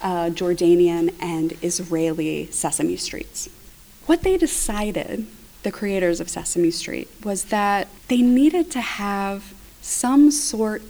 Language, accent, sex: English, American, female